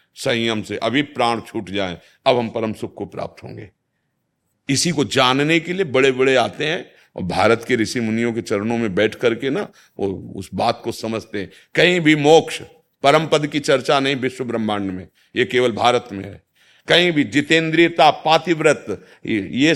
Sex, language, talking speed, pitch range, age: male, Hindi, 185 wpm, 115-145 Hz, 50-69